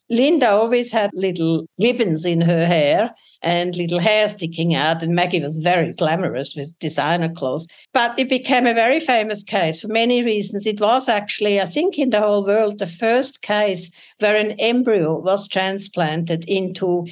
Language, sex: English, female